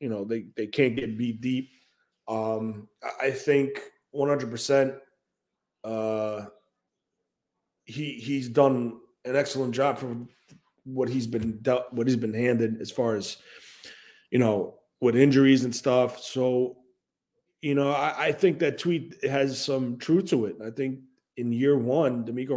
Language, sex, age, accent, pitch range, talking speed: English, male, 20-39, American, 115-140 Hz, 150 wpm